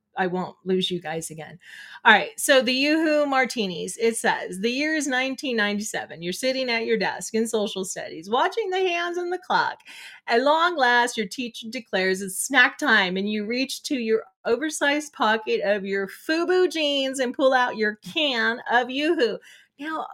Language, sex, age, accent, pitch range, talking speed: English, female, 30-49, American, 205-265 Hz, 180 wpm